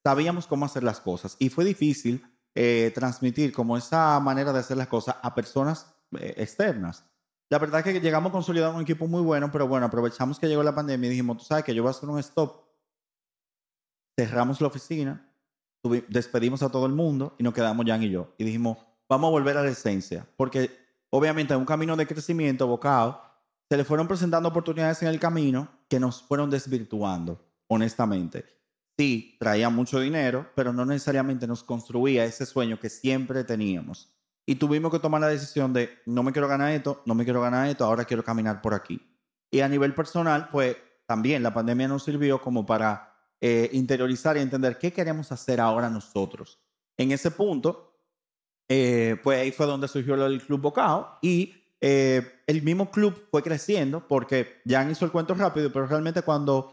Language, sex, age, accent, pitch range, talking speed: Spanish, male, 30-49, Venezuelan, 120-150 Hz, 190 wpm